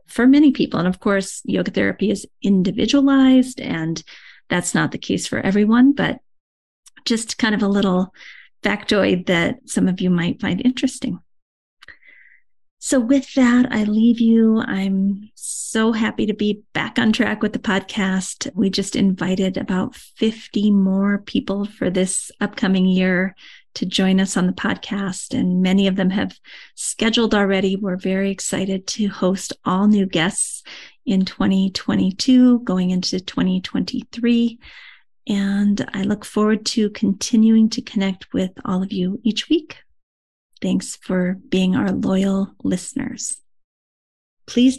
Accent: American